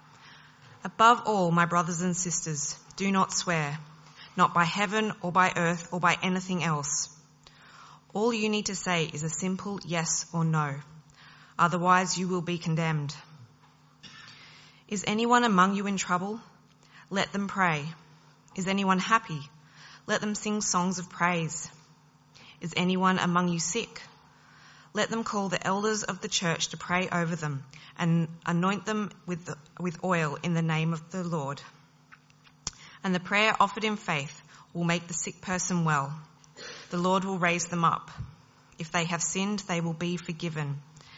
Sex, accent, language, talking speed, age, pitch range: female, Australian, English, 155 wpm, 20-39, 155-185 Hz